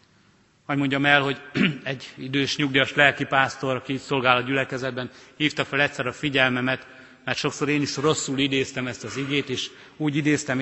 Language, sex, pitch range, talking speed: Hungarian, male, 120-145 Hz, 165 wpm